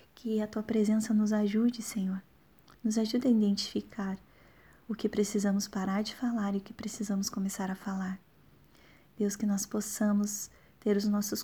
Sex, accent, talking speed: female, Brazilian, 165 wpm